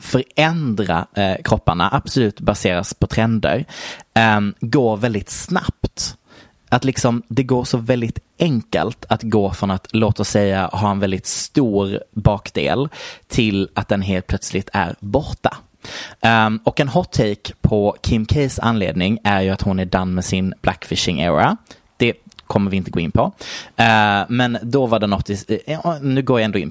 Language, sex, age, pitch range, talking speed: Swedish, male, 20-39, 100-125 Hz, 155 wpm